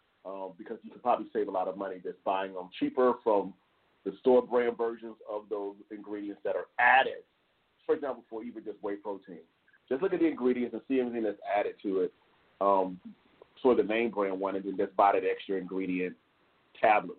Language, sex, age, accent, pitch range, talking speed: English, male, 40-59, American, 105-155 Hz, 205 wpm